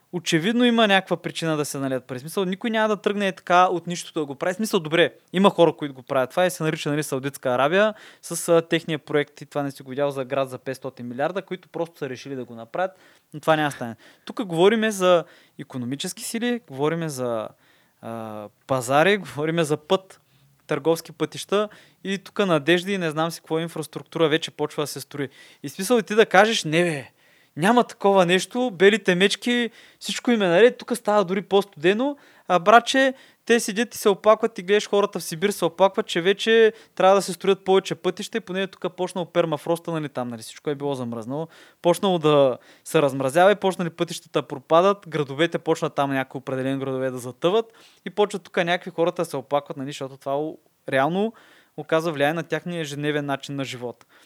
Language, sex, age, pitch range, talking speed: Bulgarian, male, 20-39, 140-190 Hz, 200 wpm